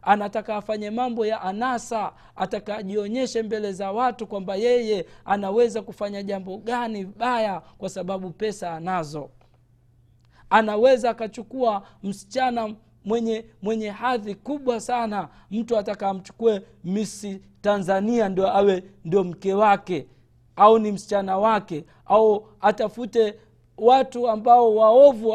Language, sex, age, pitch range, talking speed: Swahili, male, 50-69, 170-220 Hz, 110 wpm